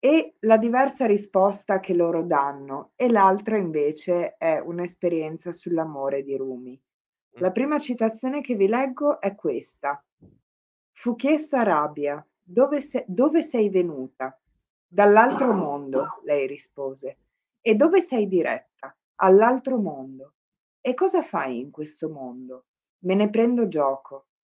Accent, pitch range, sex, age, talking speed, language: native, 150-220 Hz, female, 50-69, 125 wpm, Italian